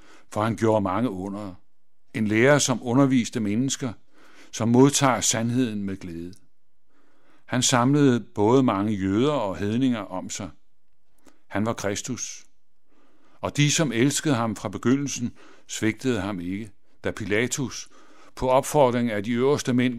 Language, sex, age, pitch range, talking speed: Danish, male, 60-79, 100-130 Hz, 135 wpm